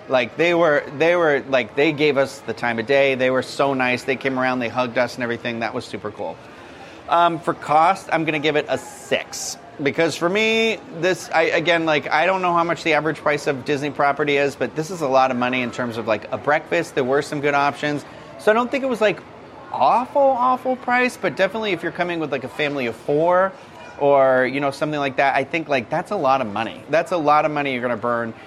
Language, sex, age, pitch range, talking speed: English, male, 30-49, 125-160 Hz, 255 wpm